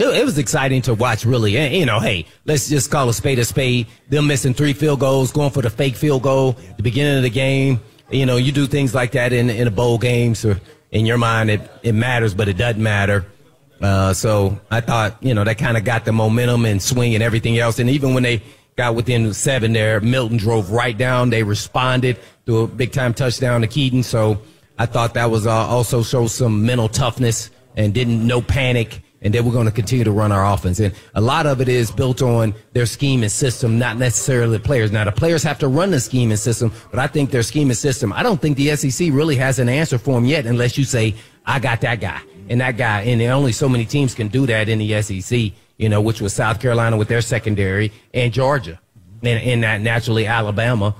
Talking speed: 235 wpm